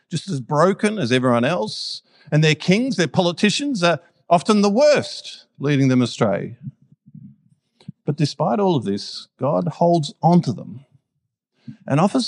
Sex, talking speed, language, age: male, 145 wpm, English, 50-69